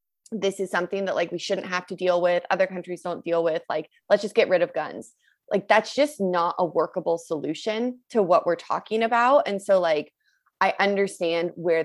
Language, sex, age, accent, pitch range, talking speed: English, female, 20-39, American, 160-200 Hz, 210 wpm